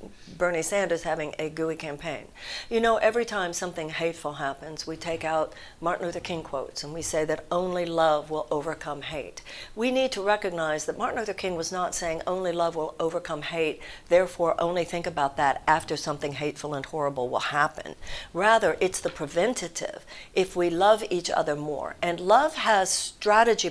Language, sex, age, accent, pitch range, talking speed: English, female, 60-79, American, 160-205 Hz, 180 wpm